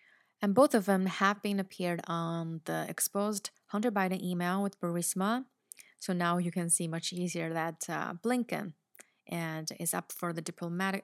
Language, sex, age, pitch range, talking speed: English, female, 30-49, 170-200 Hz, 170 wpm